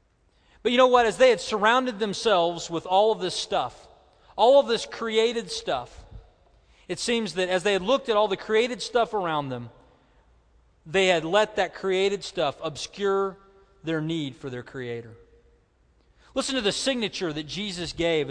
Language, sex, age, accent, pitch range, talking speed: English, male, 40-59, American, 145-225 Hz, 170 wpm